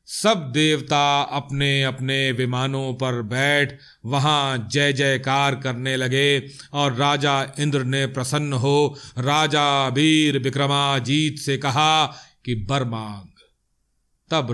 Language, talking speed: Hindi, 105 wpm